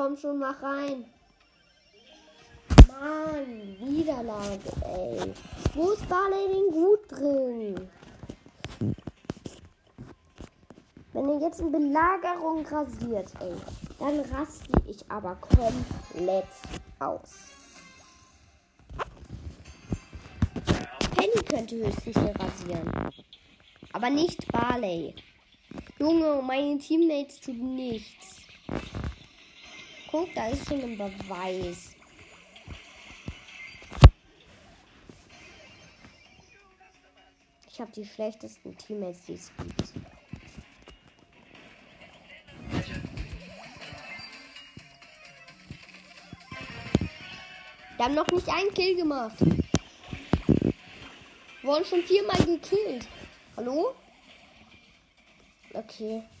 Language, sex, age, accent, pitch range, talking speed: German, female, 20-39, German, 230-330 Hz, 70 wpm